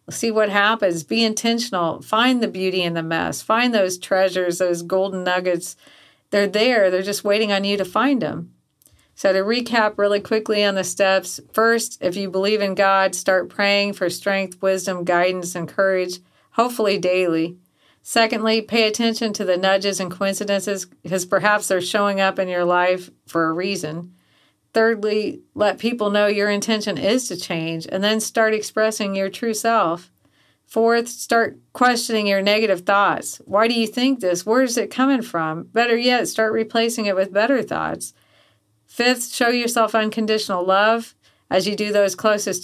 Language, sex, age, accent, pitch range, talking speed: English, female, 40-59, American, 180-220 Hz, 170 wpm